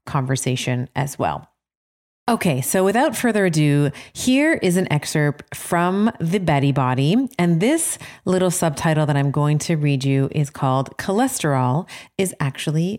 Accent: American